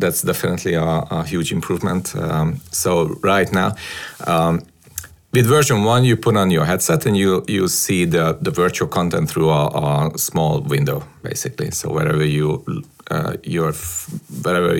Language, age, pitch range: English, 40-59, 85-125 Hz